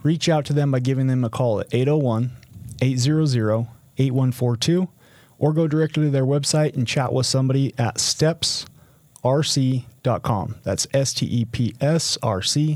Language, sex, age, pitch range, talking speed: English, male, 30-49, 120-145 Hz, 120 wpm